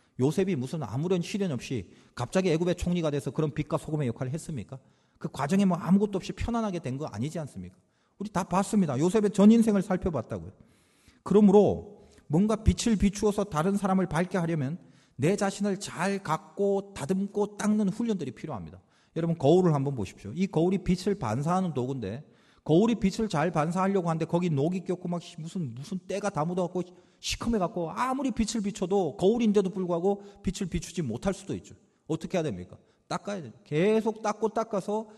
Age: 40-59